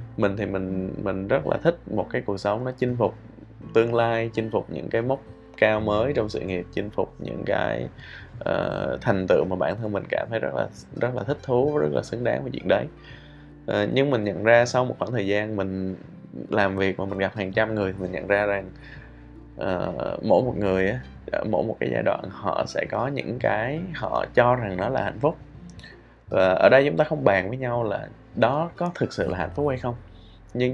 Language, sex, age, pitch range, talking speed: Vietnamese, male, 20-39, 95-125 Hz, 230 wpm